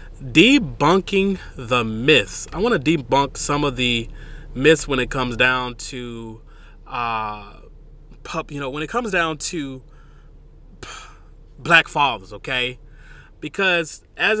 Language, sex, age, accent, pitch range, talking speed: English, male, 20-39, American, 140-195 Hz, 125 wpm